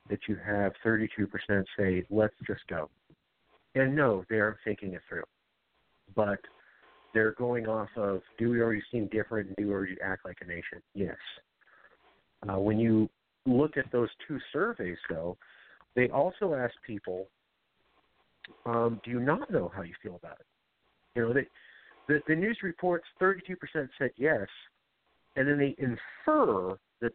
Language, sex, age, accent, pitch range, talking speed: English, male, 50-69, American, 105-140 Hz, 155 wpm